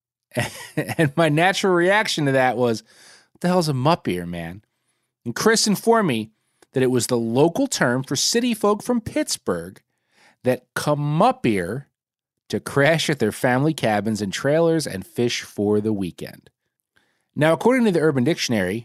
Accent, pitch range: American, 115-165 Hz